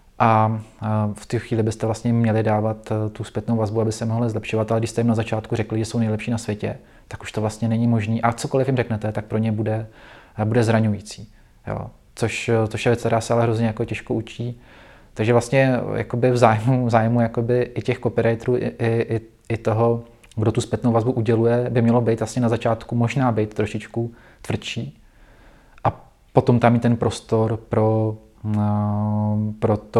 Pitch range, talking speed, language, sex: 110-120 Hz, 185 wpm, Czech, male